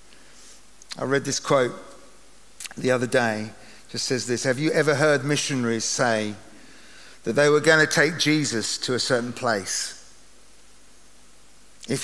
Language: English